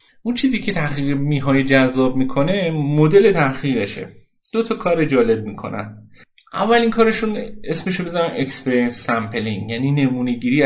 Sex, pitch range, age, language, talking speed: male, 115-175 Hz, 30-49, Persian, 140 wpm